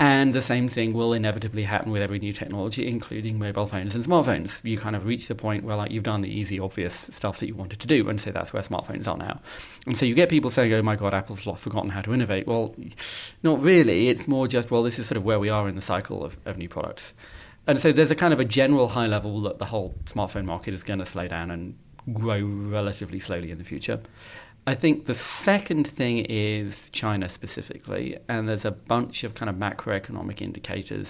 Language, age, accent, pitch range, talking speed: English, 30-49, British, 100-115 Hz, 230 wpm